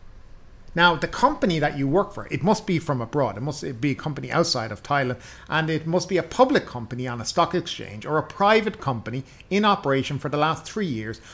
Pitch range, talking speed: 120-170 Hz, 220 wpm